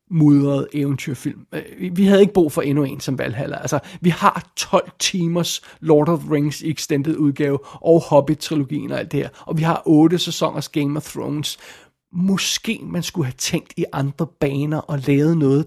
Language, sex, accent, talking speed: Danish, male, native, 175 wpm